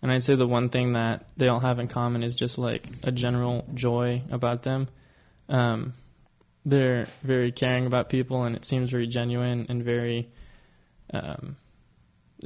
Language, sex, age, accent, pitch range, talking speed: English, male, 20-39, American, 120-130 Hz, 165 wpm